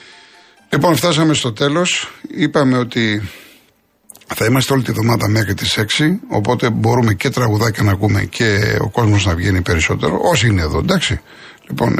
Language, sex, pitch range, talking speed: Greek, male, 100-130 Hz, 155 wpm